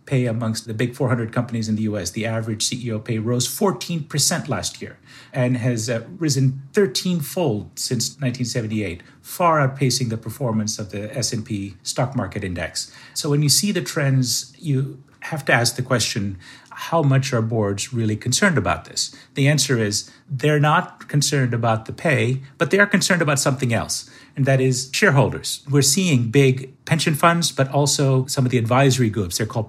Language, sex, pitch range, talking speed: English, male, 110-135 Hz, 180 wpm